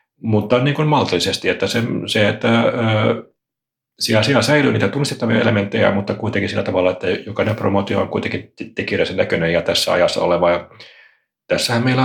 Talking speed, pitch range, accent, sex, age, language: 160 wpm, 90-115 Hz, native, male, 40-59, Finnish